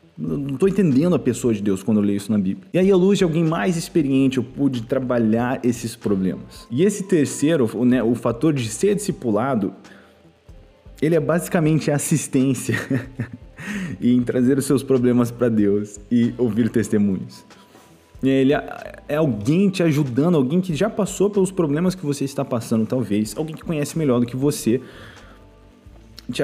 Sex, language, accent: male, Portuguese, Brazilian